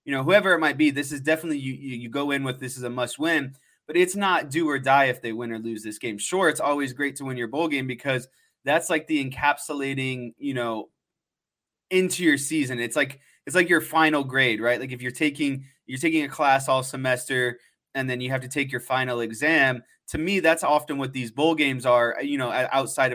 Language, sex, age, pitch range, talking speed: English, male, 20-39, 130-160 Hz, 235 wpm